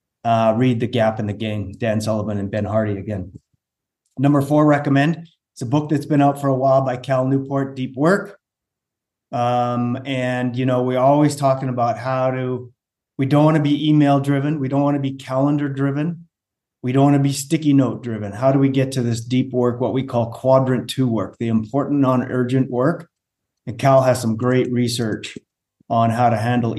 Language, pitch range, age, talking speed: English, 115-135 Hz, 30-49, 200 wpm